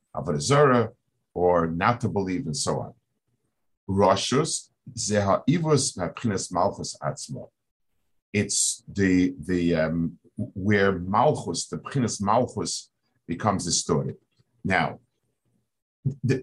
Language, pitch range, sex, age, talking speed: English, 95-130 Hz, male, 50-69, 100 wpm